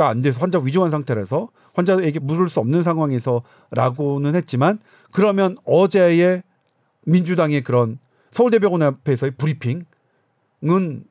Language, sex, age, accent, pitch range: Korean, male, 40-59, native, 145-215 Hz